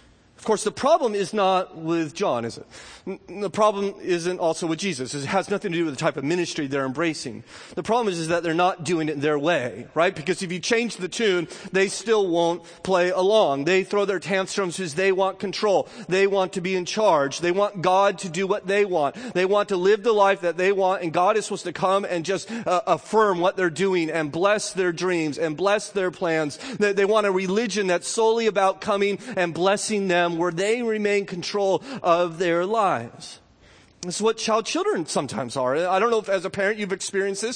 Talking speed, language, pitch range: 220 wpm, English, 170-195 Hz